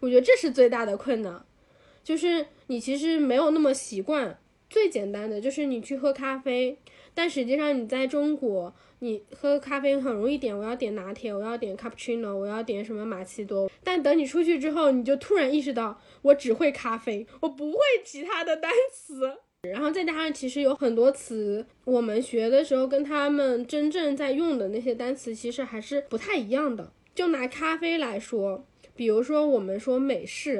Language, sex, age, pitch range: Chinese, female, 10-29, 225-290 Hz